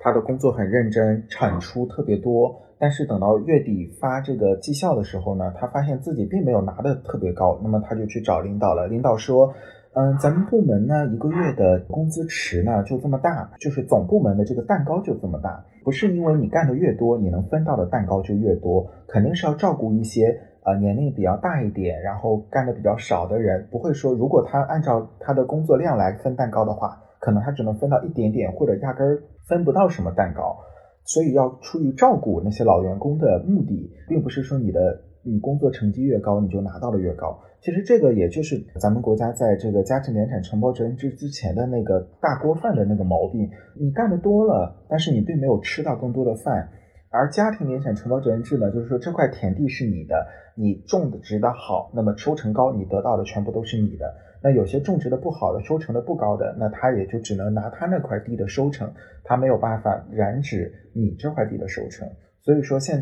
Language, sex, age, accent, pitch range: Chinese, male, 30-49, native, 105-140 Hz